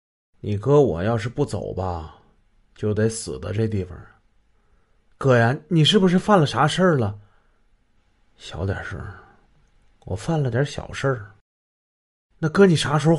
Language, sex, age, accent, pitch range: Chinese, male, 30-49, native, 100-155 Hz